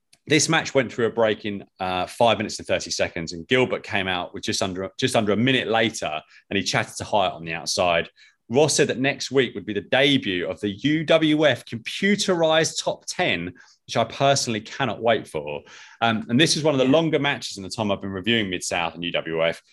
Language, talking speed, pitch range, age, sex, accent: English, 220 wpm, 100-135 Hz, 30-49, male, British